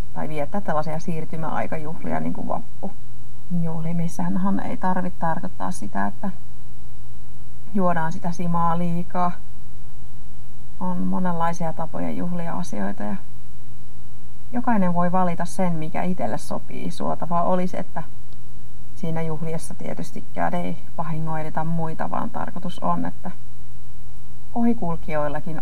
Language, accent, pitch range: Finnish, native, 120-175 Hz